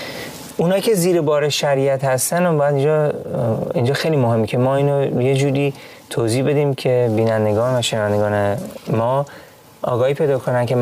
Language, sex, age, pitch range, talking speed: Persian, male, 30-49, 120-150 Hz, 155 wpm